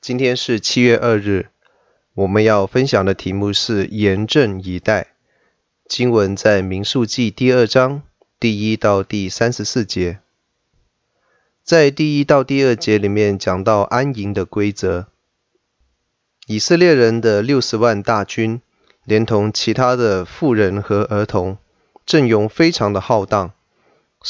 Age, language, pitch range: 20-39, Chinese, 100-130 Hz